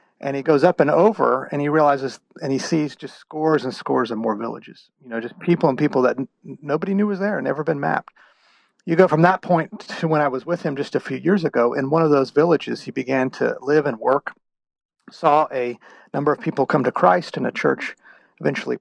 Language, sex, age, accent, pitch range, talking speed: English, male, 40-59, American, 130-165 Hz, 235 wpm